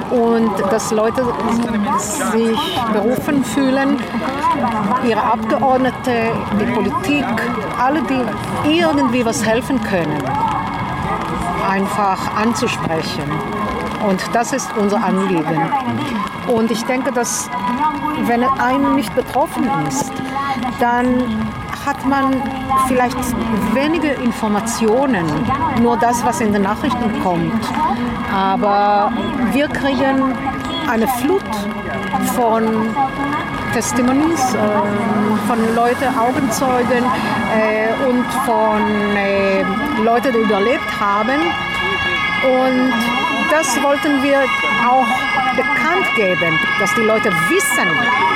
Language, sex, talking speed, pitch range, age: German, female, 95 wpm, 210-265 Hz, 50-69